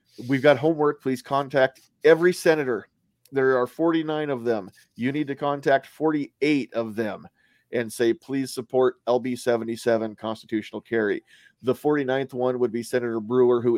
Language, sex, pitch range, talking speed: English, male, 120-150 Hz, 150 wpm